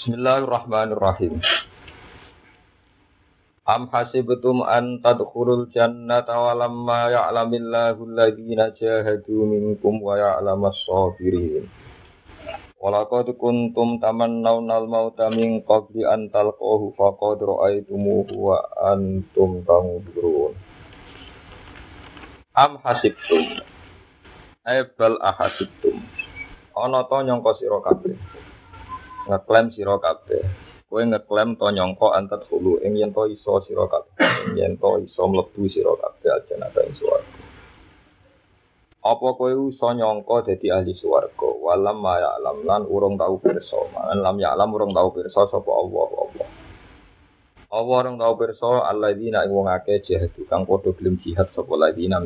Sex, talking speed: male, 85 wpm